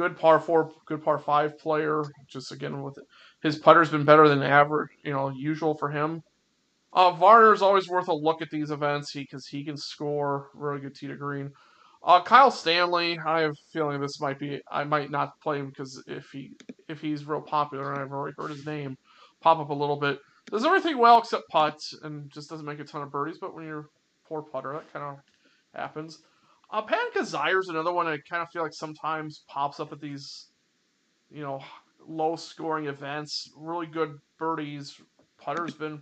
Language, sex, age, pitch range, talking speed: English, male, 20-39, 145-160 Hz, 200 wpm